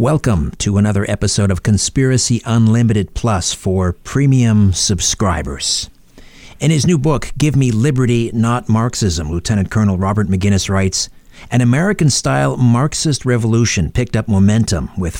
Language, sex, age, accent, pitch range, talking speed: English, male, 50-69, American, 100-125 Hz, 130 wpm